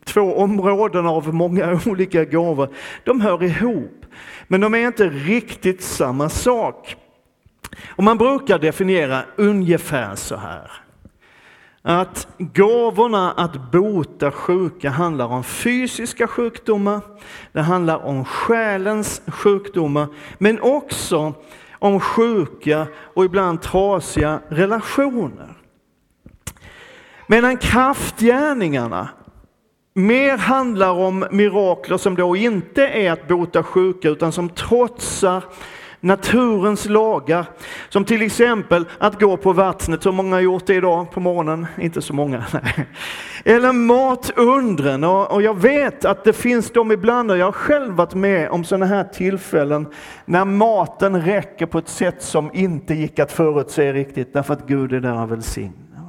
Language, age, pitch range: Swedish, 40-59, 165-220 Hz